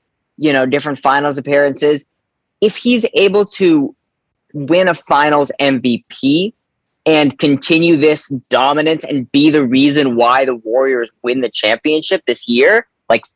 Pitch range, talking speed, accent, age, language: 130-155 Hz, 135 wpm, American, 10-29, English